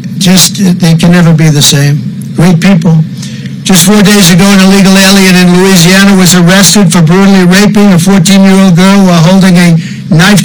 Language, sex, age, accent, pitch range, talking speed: English, male, 60-79, American, 175-195 Hz, 185 wpm